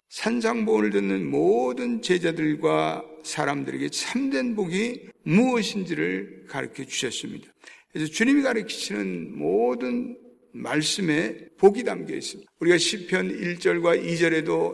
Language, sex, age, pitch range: Korean, male, 50-69, 140-215 Hz